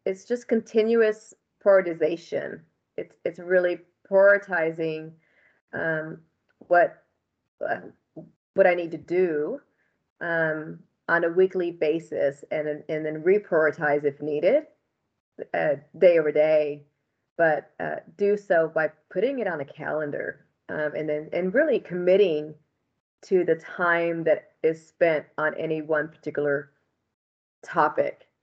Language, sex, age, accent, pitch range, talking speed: English, female, 30-49, American, 150-185 Hz, 120 wpm